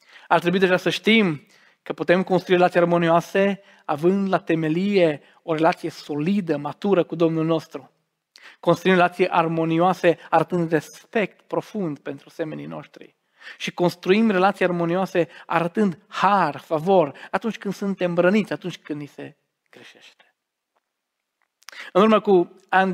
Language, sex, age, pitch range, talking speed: Romanian, male, 40-59, 155-185 Hz, 130 wpm